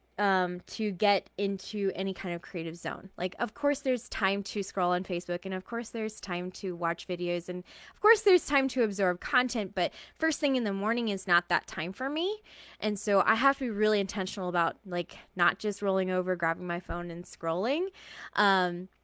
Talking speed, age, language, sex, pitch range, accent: 210 wpm, 20-39, English, female, 185-235 Hz, American